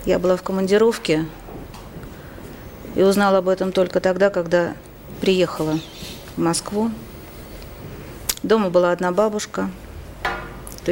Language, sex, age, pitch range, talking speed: Russian, female, 40-59, 170-210 Hz, 105 wpm